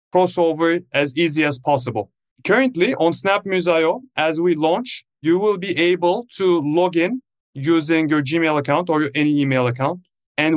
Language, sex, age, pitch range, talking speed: English, male, 30-49, 145-175 Hz, 155 wpm